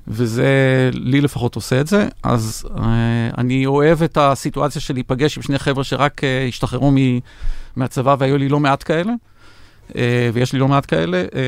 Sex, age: male, 40-59